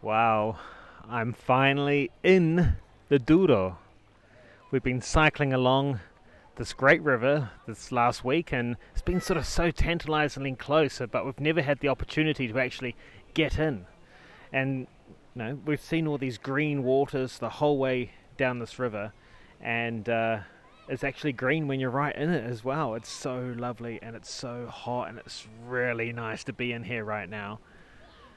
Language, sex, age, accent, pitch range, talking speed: English, male, 30-49, Australian, 120-145 Hz, 165 wpm